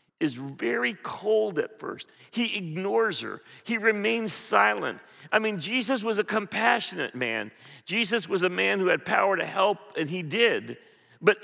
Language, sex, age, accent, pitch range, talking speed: English, male, 50-69, American, 160-220 Hz, 165 wpm